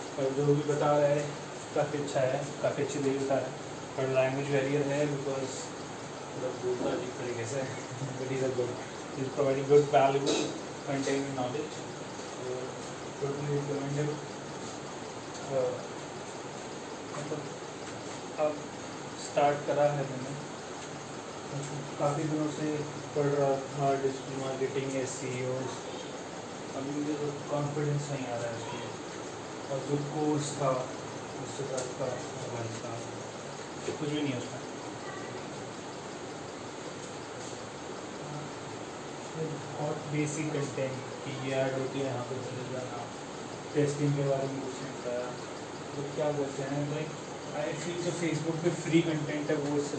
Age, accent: 20-39, native